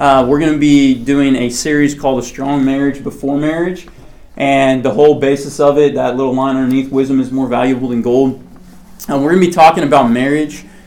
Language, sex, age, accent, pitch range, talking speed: English, male, 30-49, American, 130-150 Hz, 210 wpm